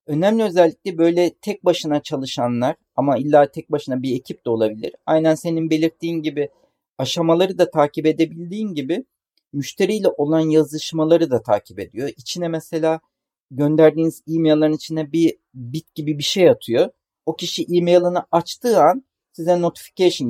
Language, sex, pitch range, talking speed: Turkish, male, 140-180 Hz, 140 wpm